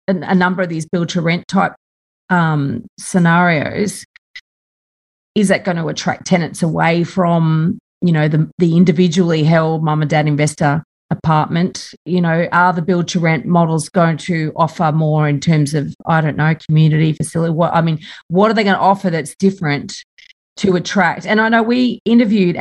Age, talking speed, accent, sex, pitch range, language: 40-59, 165 wpm, Australian, female, 160-210 Hz, English